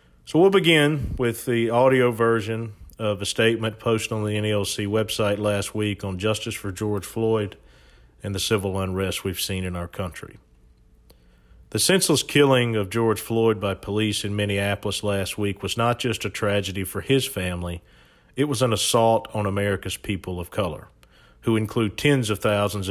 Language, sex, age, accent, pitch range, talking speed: English, male, 40-59, American, 95-115 Hz, 170 wpm